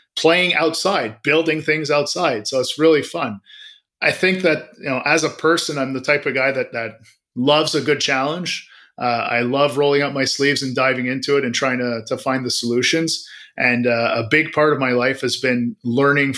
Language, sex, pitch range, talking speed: English, male, 125-150 Hz, 210 wpm